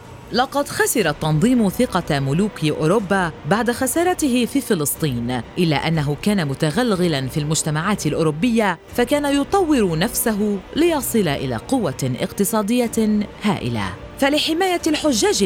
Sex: female